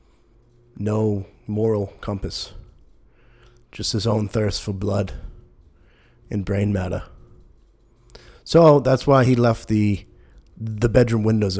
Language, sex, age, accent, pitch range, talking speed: English, male, 20-39, American, 90-110 Hz, 110 wpm